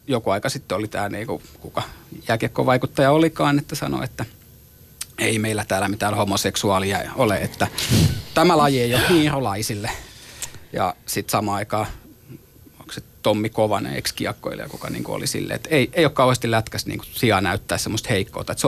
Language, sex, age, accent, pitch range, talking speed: Finnish, male, 30-49, native, 110-145 Hz, 165 wpm